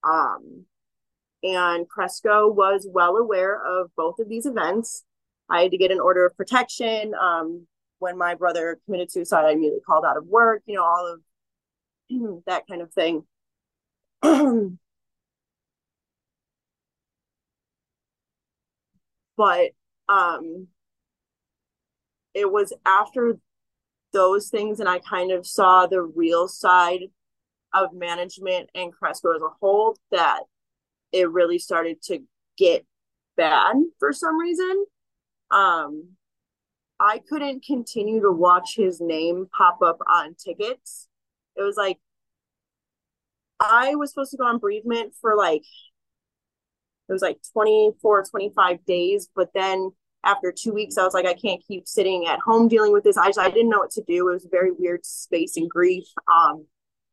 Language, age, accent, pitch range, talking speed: English, 30-49, American, 180-230 Hz, 145 wpm